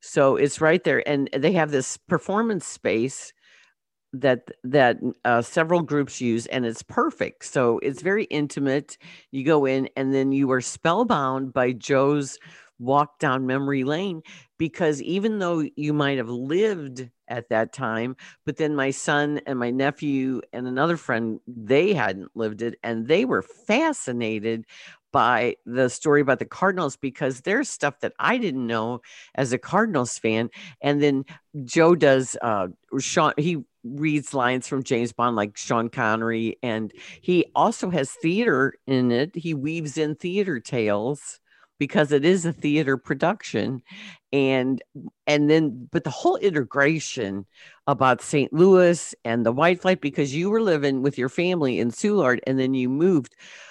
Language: English